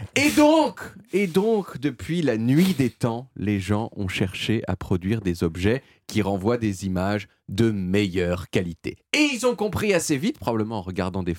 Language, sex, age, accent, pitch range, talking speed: French, male, 40-59, French, 95-150 Hz, 180 wpm